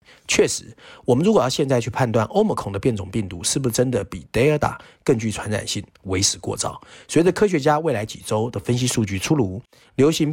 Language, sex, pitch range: Chinese, male, 100-130 Hz